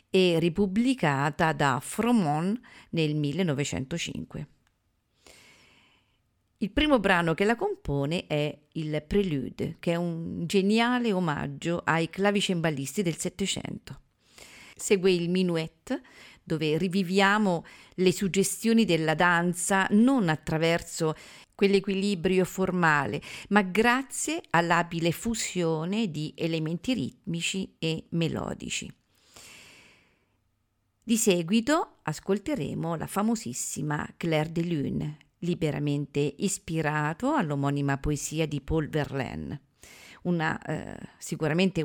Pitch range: 155-200 Hz